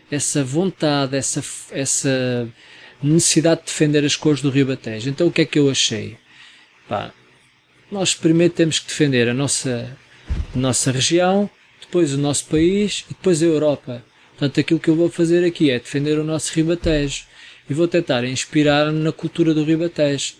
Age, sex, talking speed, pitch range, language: 20-39, male, 170 wpm, 130-170 Hz, Portuguese